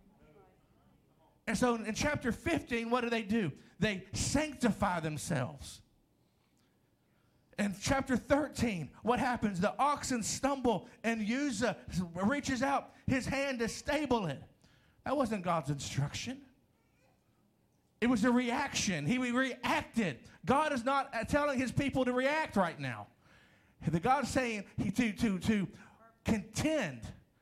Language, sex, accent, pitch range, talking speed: English, male, American, 200-280 Hz, 125 wpm